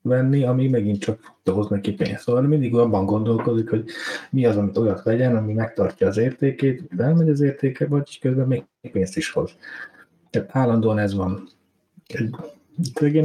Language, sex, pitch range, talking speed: Hungarian, male, 105-130 Hz, 165 wpm